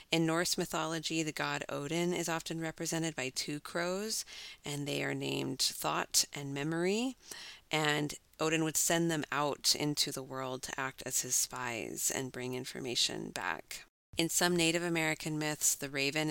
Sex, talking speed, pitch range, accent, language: female, 160 wpm, 130-160 Hz, American, English